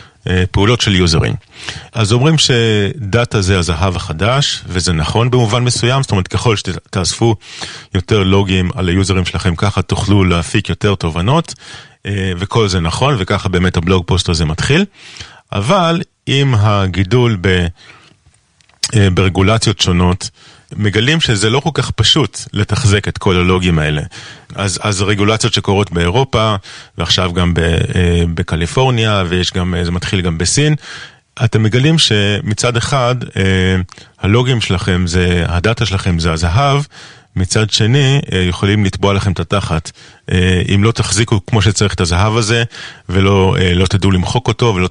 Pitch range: 90-115 Hz